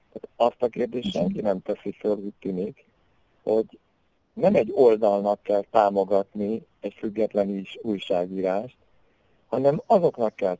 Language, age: Hungarian, 50-69